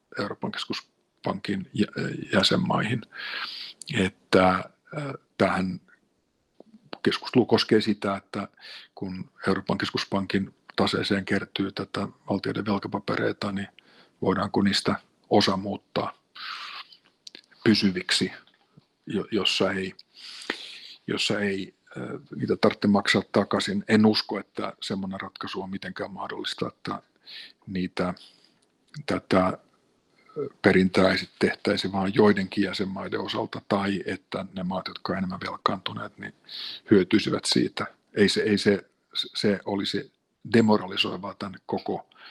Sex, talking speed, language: male, 95 wpm, Finnish